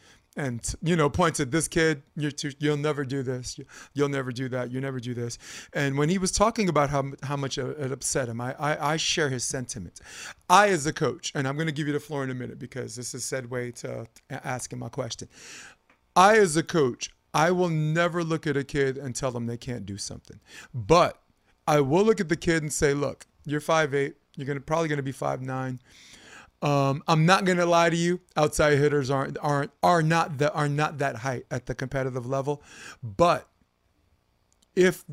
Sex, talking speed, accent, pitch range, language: male, 210 wpm, American, 130-160 Hz, English